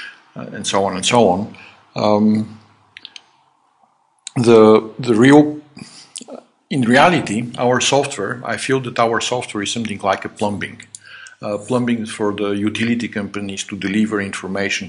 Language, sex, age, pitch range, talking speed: English, male, 50-69, 100-120 Hz, 135 wpm